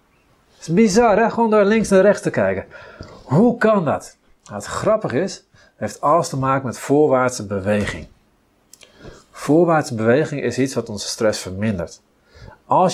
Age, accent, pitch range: 40-59, Dutch, 115-170 Hz